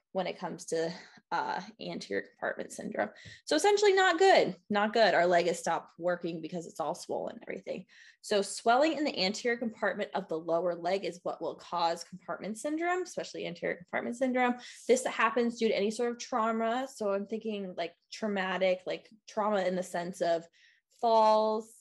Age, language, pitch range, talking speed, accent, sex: 20-39, English, 170-225 Hz, 180 wpm, American, female